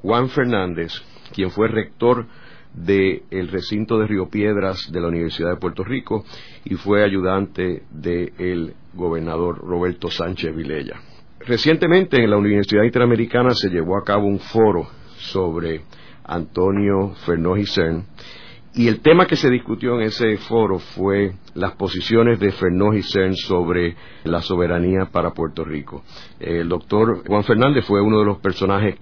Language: Spanish